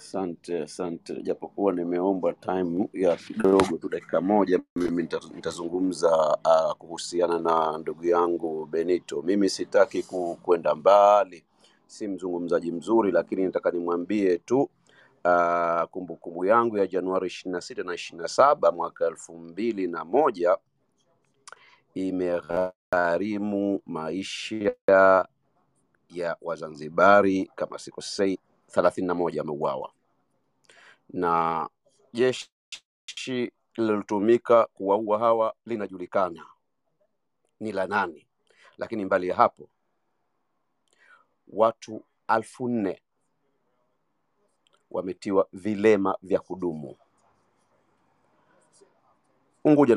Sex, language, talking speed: male, Swahili, 85 wpm